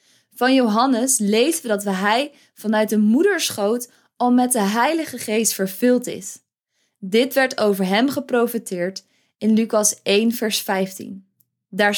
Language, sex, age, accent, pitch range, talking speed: Dutch, female, 20-39, Dutch, 200-245 Hz, 135 wpm